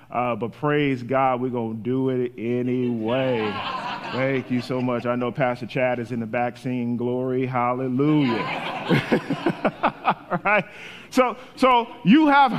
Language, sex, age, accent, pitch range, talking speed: English, male, 40-59, American, 175-230 Hz, 150 wpm